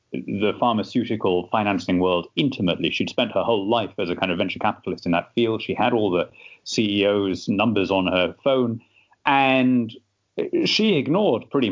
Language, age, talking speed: English, 30-49, 165 wpm